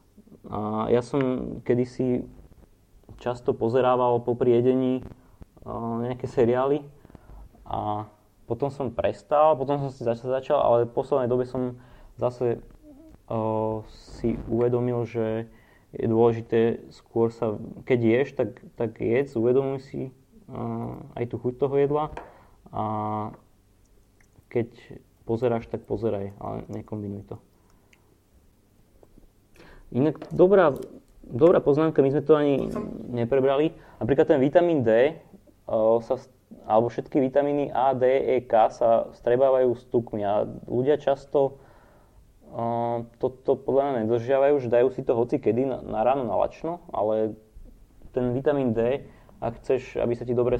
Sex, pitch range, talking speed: male, 110-130 Hz, 125 wpm